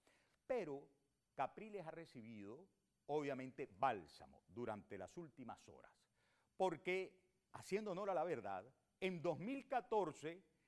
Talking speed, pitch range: 100 wpm, 155-210 Hz